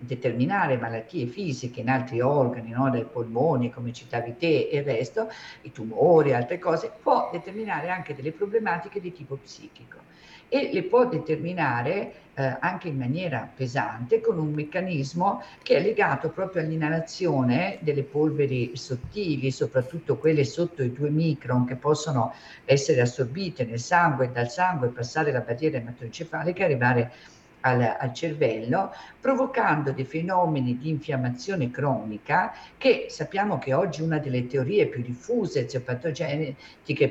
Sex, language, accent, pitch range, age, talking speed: female, Italian, native, 125-170 Hz, 50-69, 140 wpm